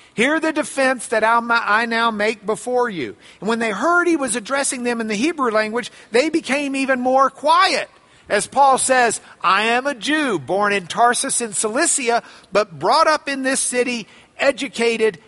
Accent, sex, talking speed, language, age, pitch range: American, male, 175 wpm, English, 50-69, 195-270 Hz